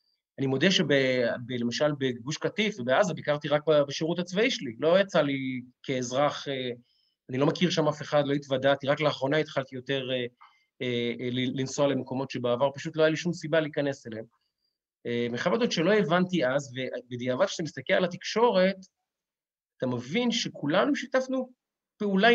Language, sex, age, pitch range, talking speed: Hebrew, male, 30-49, 135-200 Hz, 140 wpm